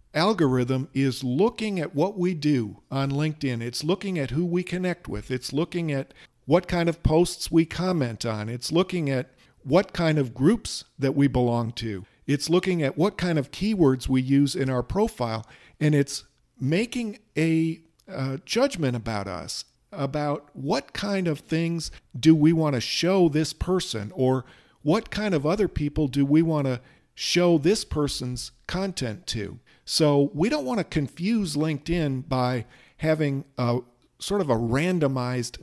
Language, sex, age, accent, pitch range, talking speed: English, male, 50-69, American, 125-165 Hz, 165 wpm